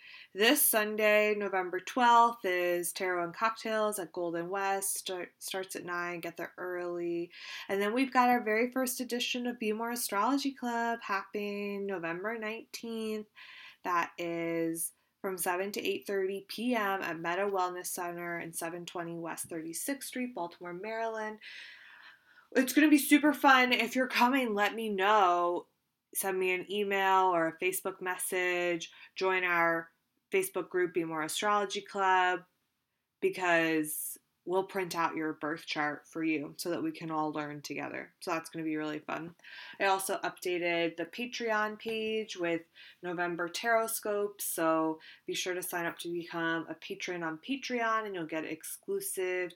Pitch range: 170-220 Hz